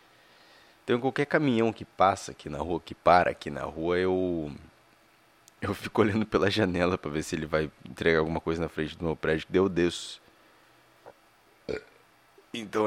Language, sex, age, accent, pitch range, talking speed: Portuguese, male, 20-39, Brazilian, 80-110 Hz, 170 wpm